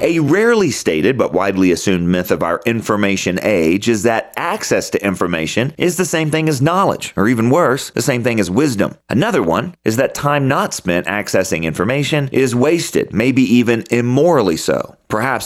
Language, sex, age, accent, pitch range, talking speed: English, male, 40-59, American, 105-135 Hz, 180 wpm